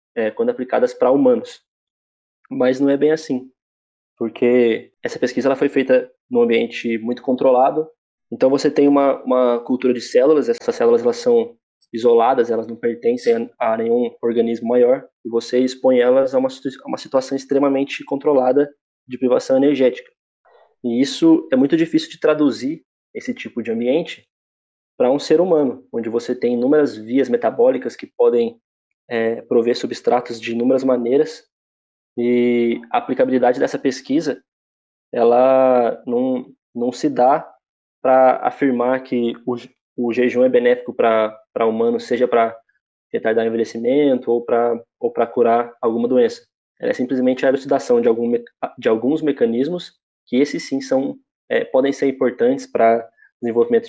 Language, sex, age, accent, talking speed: Portuguese, male, 20-39, Brazilian, 150 wpm